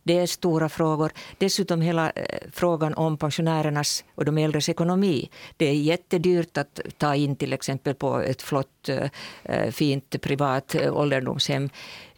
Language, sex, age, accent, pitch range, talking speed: Swedish, female, 50-69, Finnish, 135-170 Hz, 130 wpm